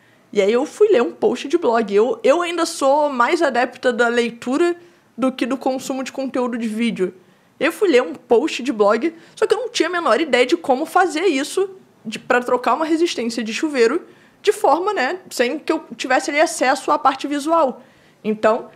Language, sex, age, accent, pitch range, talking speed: Portuguese, female, 20-39, Brazilian, 245-340 Hz, 205 wpm